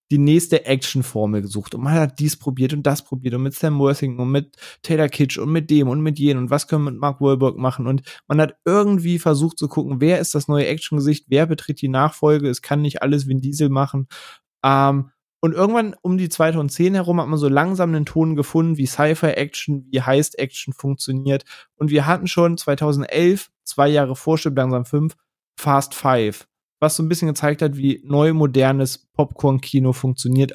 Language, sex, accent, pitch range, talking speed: German, male, German, 130-155 Hz, 195 wpm